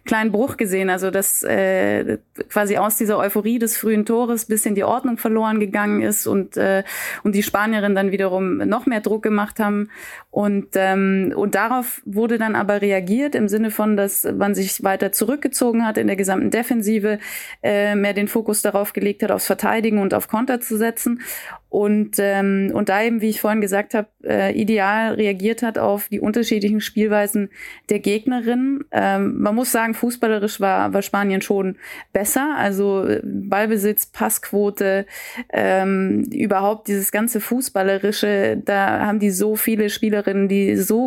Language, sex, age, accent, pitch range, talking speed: German, female, 20-39, German, 200-225 Hz, 165 wpm